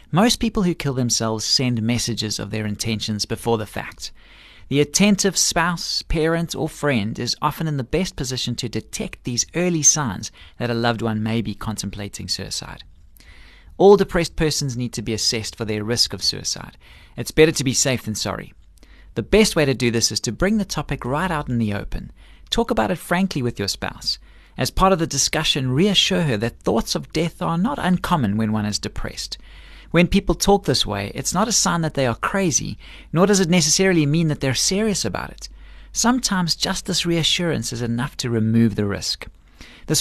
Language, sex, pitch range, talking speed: English, male, 110-170 Hz, 200 wpm